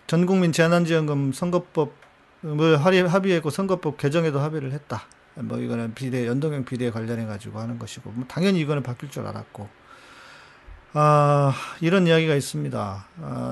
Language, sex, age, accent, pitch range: Korean, male, 40-59, native, 130-175 Hz